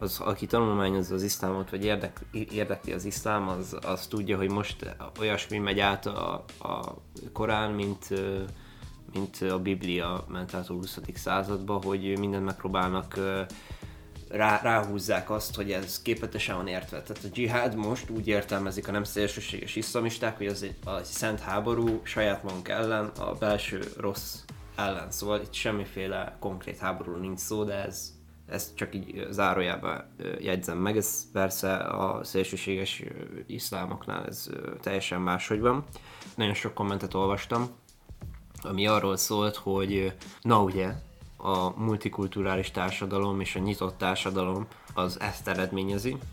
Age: 20-39